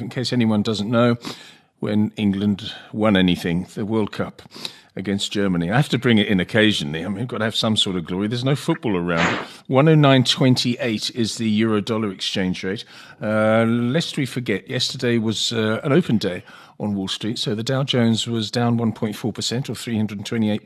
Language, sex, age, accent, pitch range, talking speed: English, male, 40-59, British, 110-135 Hz, 185 wpm